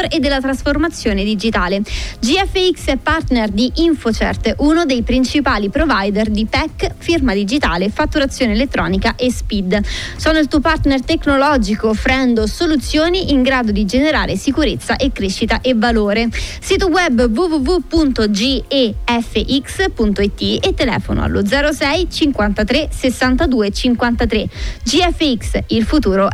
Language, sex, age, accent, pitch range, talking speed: Italian, female, 20-39, native, 225-300 Hz, 115 wpm